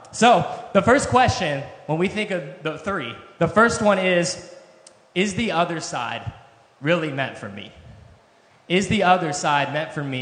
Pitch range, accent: 130-180 Hz, American